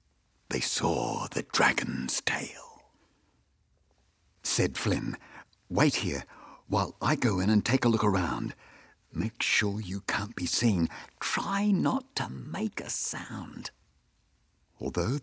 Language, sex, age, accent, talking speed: English, male, 60-79, British, 120 wpm